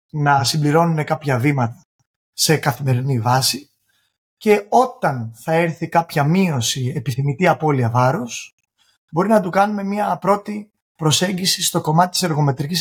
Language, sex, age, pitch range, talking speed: Greek, male, 30-49, 140-185 Hz, 125 wpm